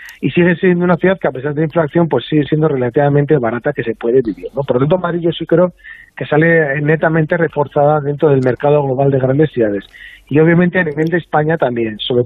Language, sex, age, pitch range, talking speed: Spanish, male, 40-59, 140-160 Hz, 230 wpm